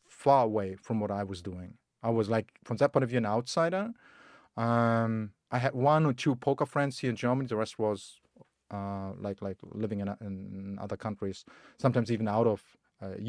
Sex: male